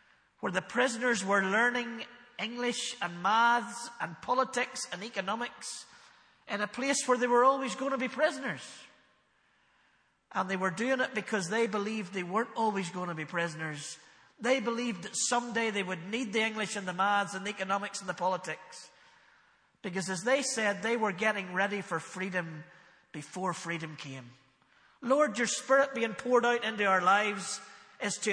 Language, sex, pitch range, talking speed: English, male, 195-250 Hz, 170 wpm